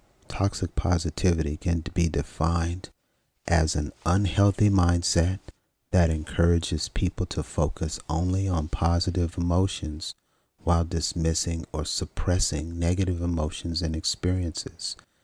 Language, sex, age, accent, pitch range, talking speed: English, male, 40-59, American, 80-95 Hz, 100 wpm